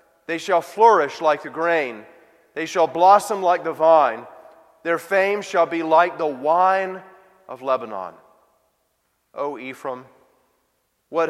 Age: 40-59